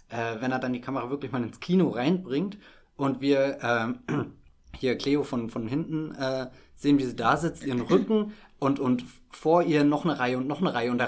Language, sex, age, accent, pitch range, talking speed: German, male, 20-39, German, 115-140 Hz, 210 wpm